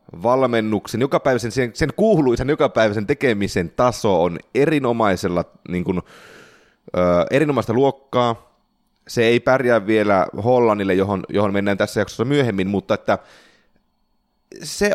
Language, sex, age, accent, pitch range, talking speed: Finnish, male, 30-49, native, 95-140 Hz, 90 wpm